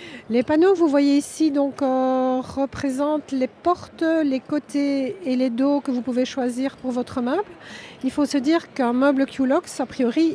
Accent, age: French, 50-69